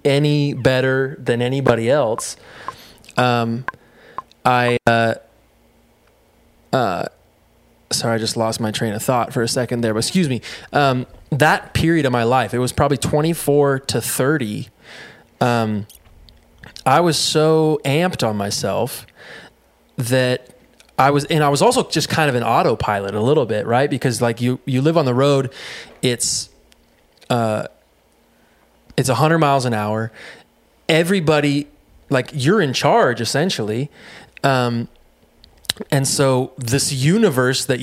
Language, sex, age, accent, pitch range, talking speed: English, male, 20-39, American, 120-145 Hz, 140 wpm